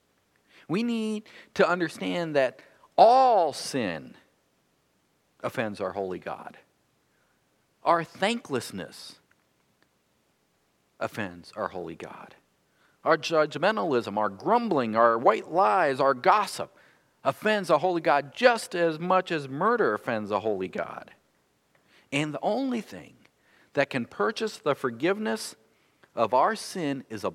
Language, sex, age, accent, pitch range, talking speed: English, male, 50-69, American, 130-185 Hz, 115 wpm